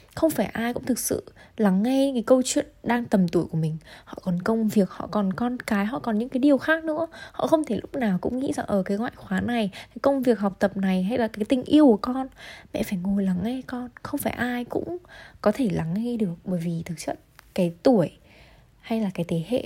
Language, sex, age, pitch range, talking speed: Vietnamese, female, 20-39, 190-250 Hz, 250 wpm